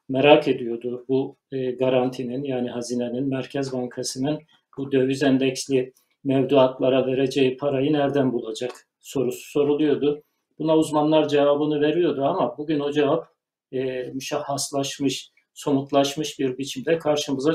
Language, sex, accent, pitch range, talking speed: Turkish, male, native, 130-150 Hz, 115 wpm